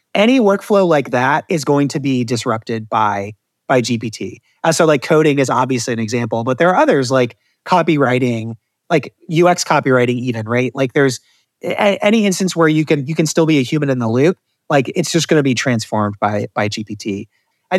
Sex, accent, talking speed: male, American, 190 wpm